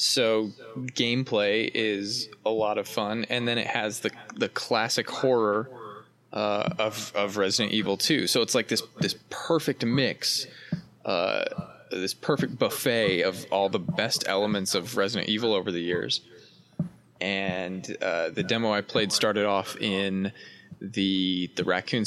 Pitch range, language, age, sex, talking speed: 95-120 Hz, English, 20-39, male, 150 wpm